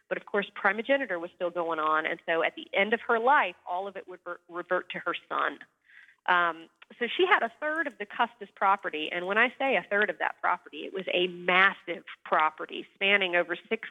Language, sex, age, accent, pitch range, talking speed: English, female, 40-59, American, 175-230 Hz, 220 wpm